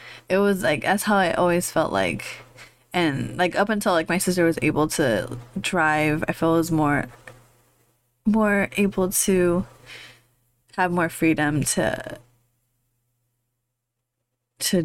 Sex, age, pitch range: female, 20-39, 125-190 Hz